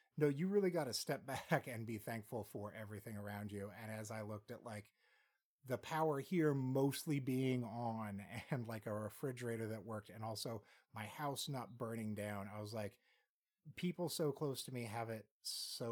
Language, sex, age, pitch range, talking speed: English, male, 30-49, 105-135 Hz, 190 wpm